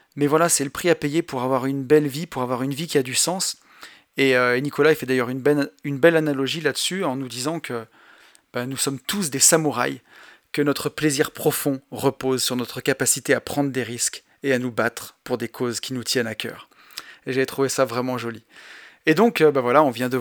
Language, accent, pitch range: French, French, 130-165 Hz